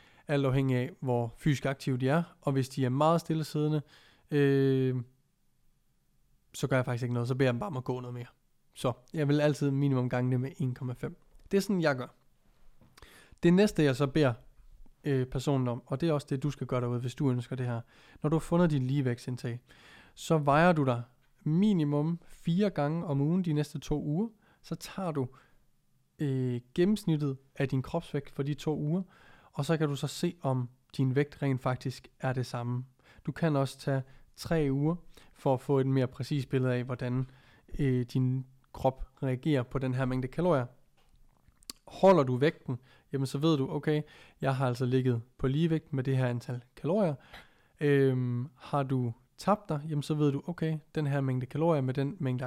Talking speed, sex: 195 wpm, male